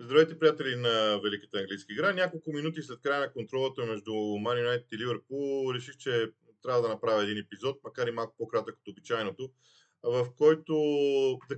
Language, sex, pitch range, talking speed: Bulgarian, male, 110-140 Hz, 165 wpm